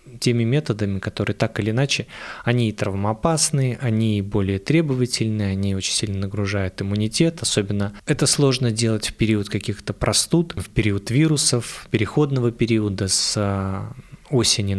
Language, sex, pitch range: Russian, male, 105-140 Hz